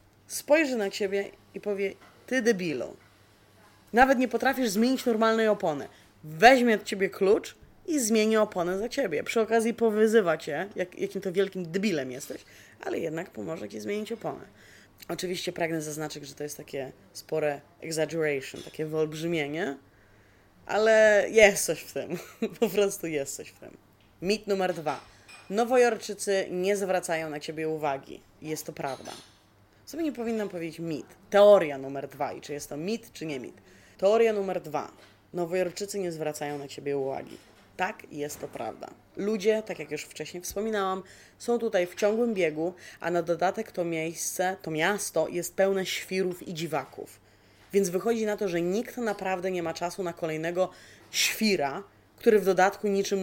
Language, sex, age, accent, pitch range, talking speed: Polish, female, 20-39, native, 155-210 Hz, 160 wpm